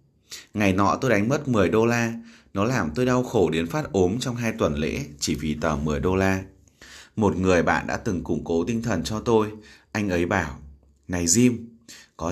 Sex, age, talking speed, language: male, 20-39, 210 wpm, Vietnamese